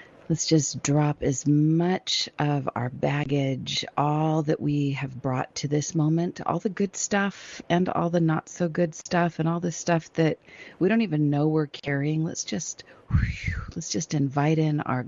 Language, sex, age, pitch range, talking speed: English, female, 40-59, 135-160 Hz, 180 wpm